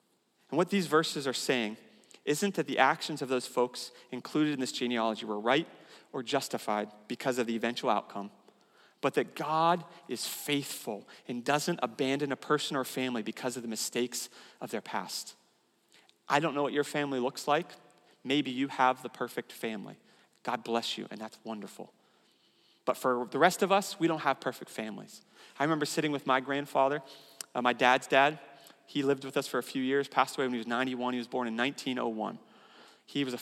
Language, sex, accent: English, male, American